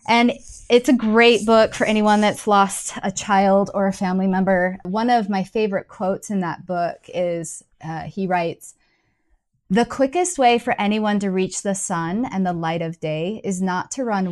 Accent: American